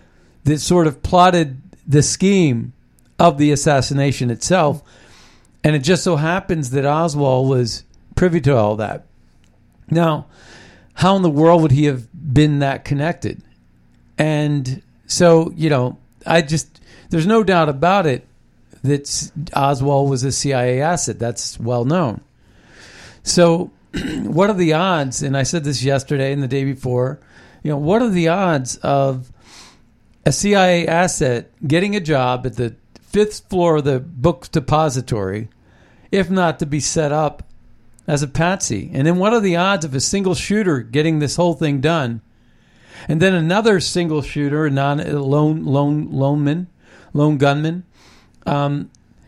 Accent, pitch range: American, 130-170 Hz